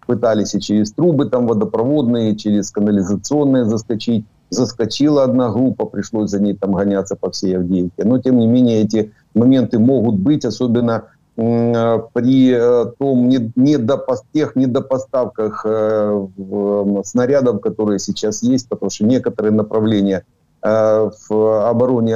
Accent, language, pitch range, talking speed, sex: native, Ukrainian, 105-125 Hz, 120 wpm, male